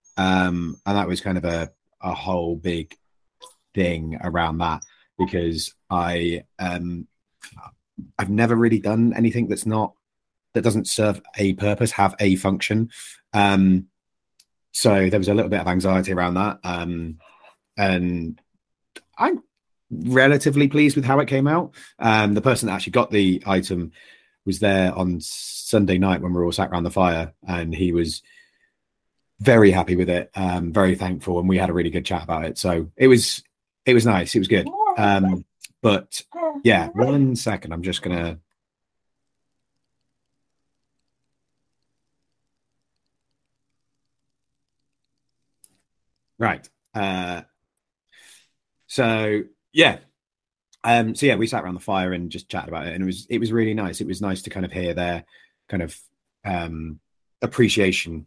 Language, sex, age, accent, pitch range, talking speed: English, male, 30-49, British, 90-115 Hz, 150 wpm